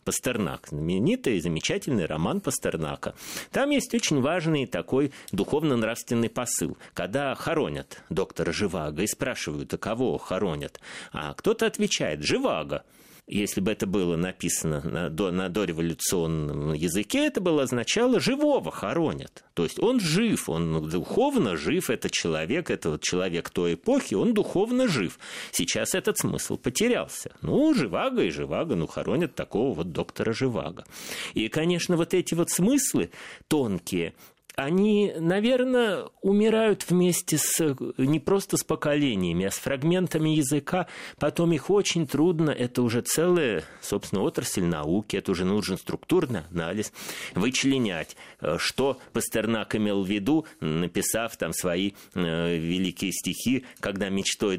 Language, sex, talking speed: Russian, male, 130 wpm